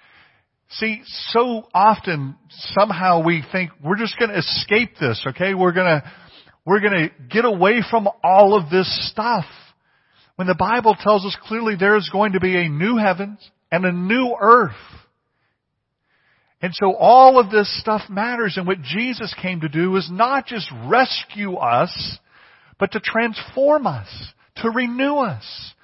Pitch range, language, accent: 155-210 Hz, English, American